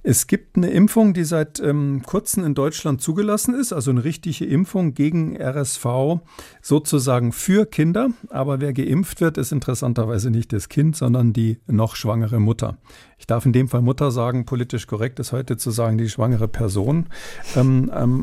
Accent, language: German, German